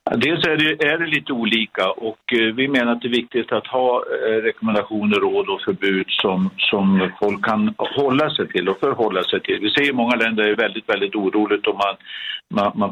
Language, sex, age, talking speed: Swedish, male, 60-79, 205 wpm